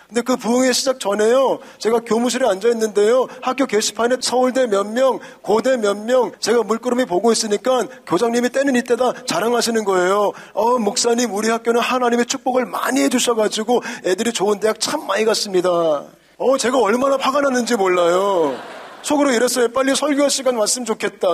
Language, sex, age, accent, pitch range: Korean, male, 40-59, native, 220-265 Hz